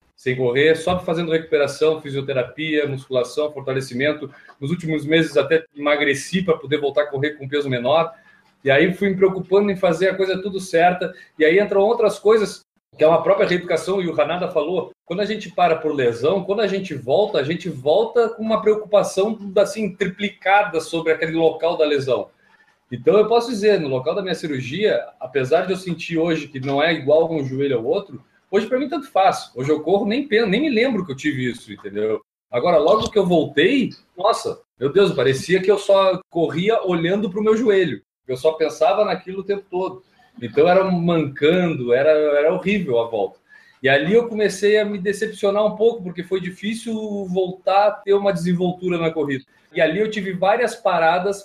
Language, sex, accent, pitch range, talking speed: Portuguese, male, Brazilian, 155-200 Hz, 195 wpm